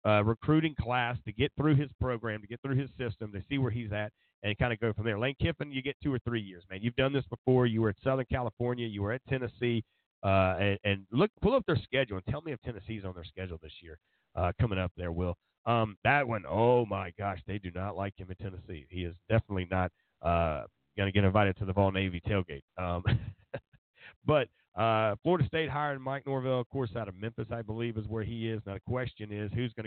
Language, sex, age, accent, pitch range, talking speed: English, male, 40-59, American, 100-120 Hz, 245 wpm